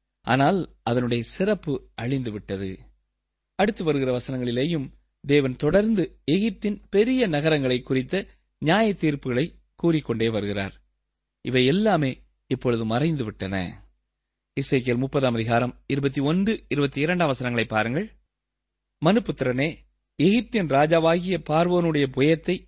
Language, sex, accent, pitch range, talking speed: Tamil, male, native, 125-180 Hz, 95 wpm